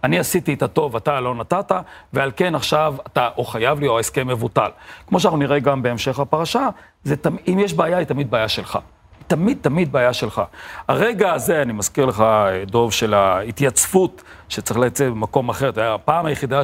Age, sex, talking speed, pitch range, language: 40-59, male, 185 wpm, 125-170 Hz, Hebrew